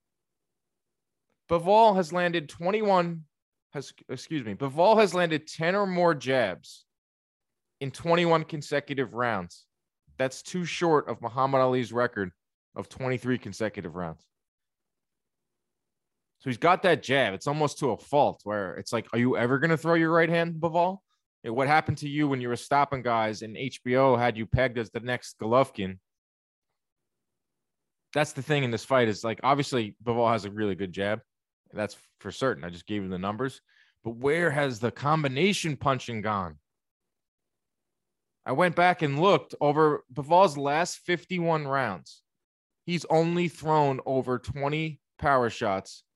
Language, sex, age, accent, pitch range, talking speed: English, male, 20-39, American, 115-165 Hz, 155 wpm